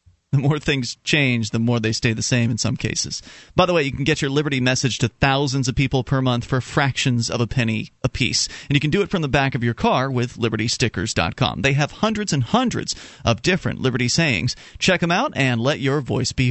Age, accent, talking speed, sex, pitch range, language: 30-49, American, 235 wpm, male, 120-150 Hz, English